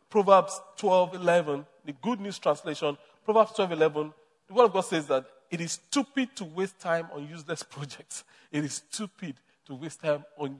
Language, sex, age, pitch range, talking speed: English, male, 40-59, 150-195 Hz, 170 wpm